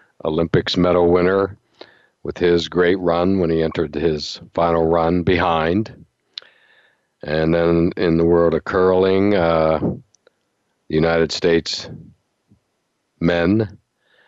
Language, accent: English, American